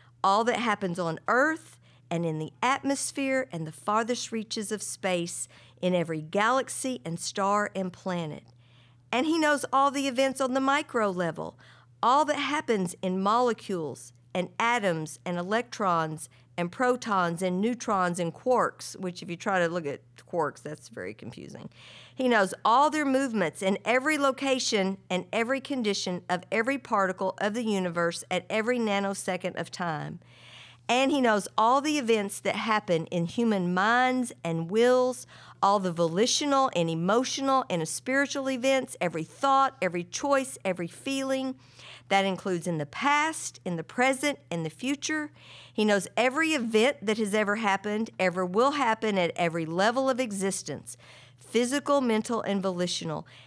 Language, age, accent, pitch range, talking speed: English, 50-69, American, 175-255 Hz, 155 wpm